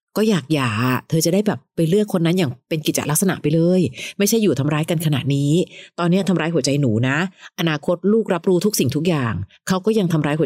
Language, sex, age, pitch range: Thai, female, 30-49, 145-200 Hz